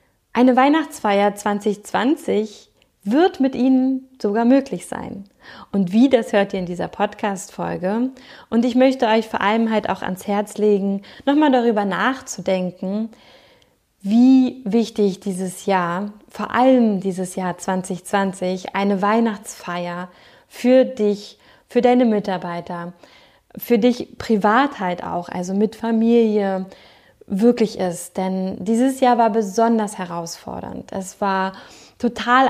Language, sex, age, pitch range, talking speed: German, female, 20-39, 190-240 Hz, 120 wpm